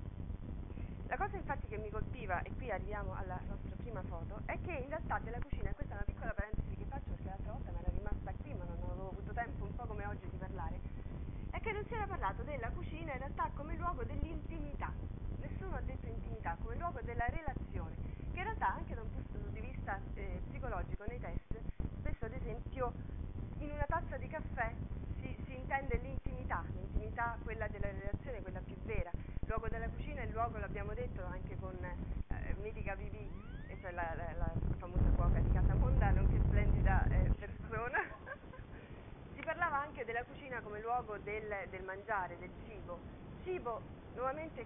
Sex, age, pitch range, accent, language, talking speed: female, 30-49, 90-115 Hz, native, Italian, 185 wpm